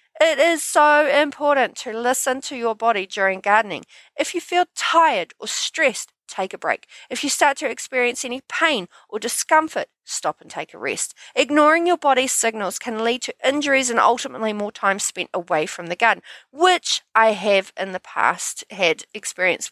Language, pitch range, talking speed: English, 195-270 Hz, 180 wpm